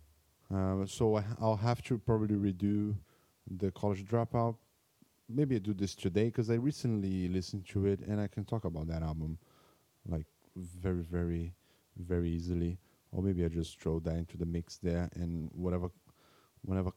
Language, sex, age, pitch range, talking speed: English, male, 20-39, 90-110 Hz, 175 wpm